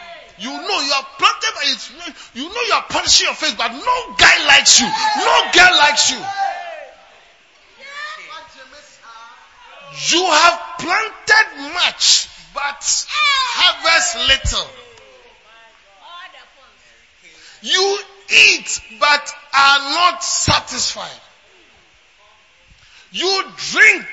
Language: English